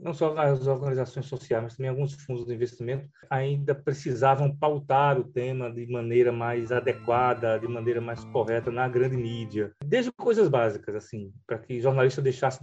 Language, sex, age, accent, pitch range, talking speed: Portuguese, male, 20-39, Brazilian, 120-140 Hz, 165 wpm